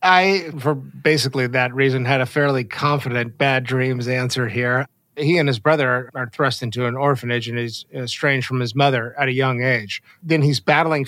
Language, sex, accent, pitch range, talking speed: English, male, American, 125-155 Hz, 190 wpm